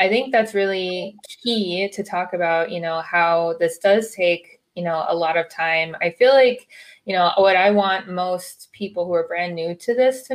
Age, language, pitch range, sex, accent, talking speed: 20-39, English, 170-210 Hz, female, American, 215 wpm